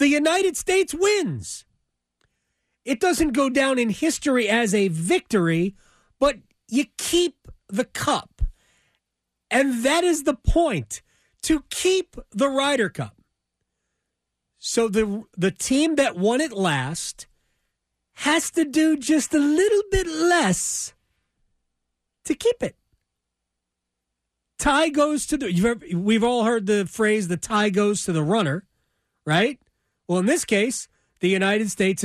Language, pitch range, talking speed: English, 180-285 Hz, 135 wpm